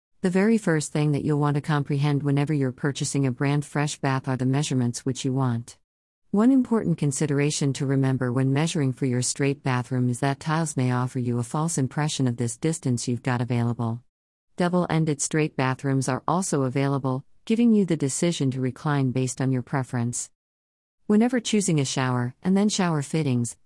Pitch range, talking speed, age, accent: 130-155 Hz, 185 wpm, 50-69, American